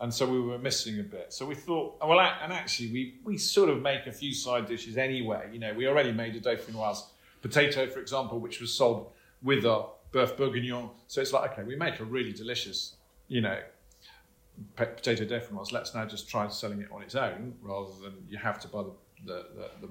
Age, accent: 40-59, British